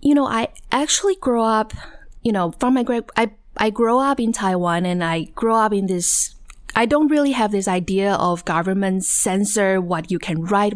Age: 20-39